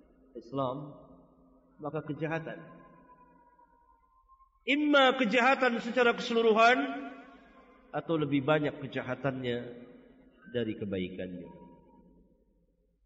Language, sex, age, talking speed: Indonesian, male, 50-69, 60 wpm